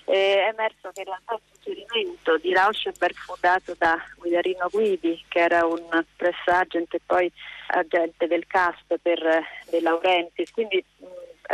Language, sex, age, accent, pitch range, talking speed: Italian, female, 30-49, native, 170-210 Hz, 145 wpm